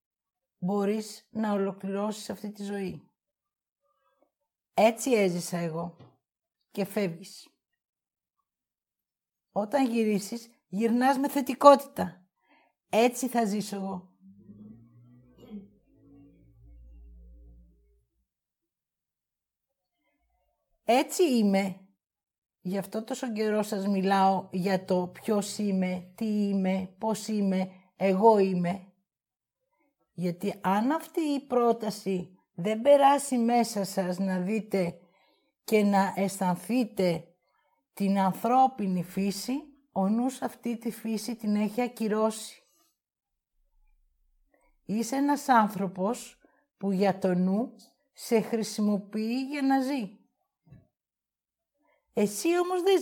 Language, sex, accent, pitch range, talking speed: Greek, female, native, 190-250 Hz, 90 wpm